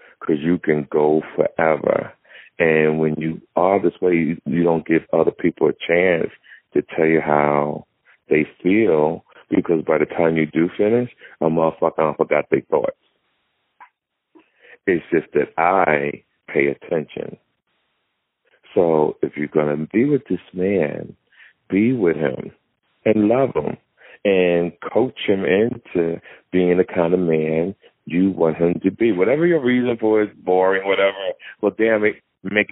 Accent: American